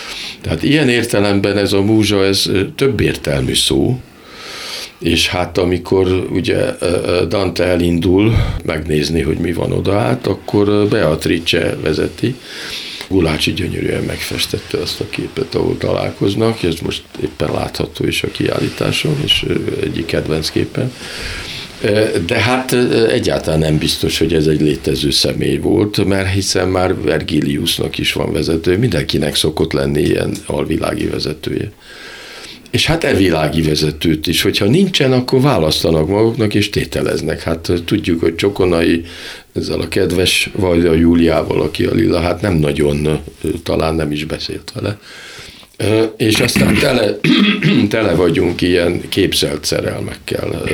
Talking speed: 130 wpm